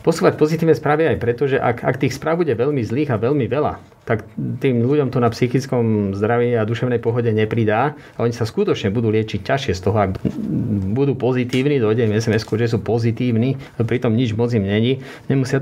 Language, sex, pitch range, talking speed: Slovak, male, 110-135 Hz, 190 wpm